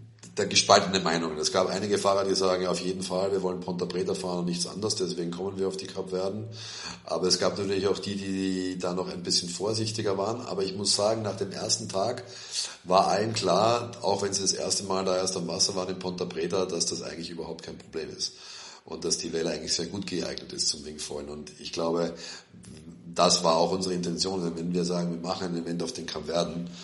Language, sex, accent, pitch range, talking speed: German, male, German, 80-95 Hz, 230 wpm